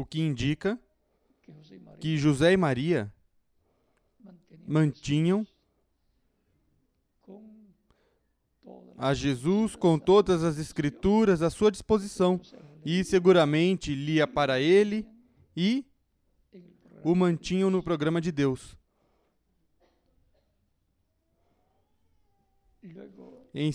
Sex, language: male, Portuguese